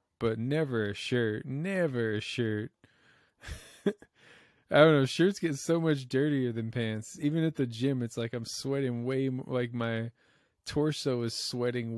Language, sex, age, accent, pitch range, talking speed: English, male, 20-39, American, 110-140 Hz, 160 wpm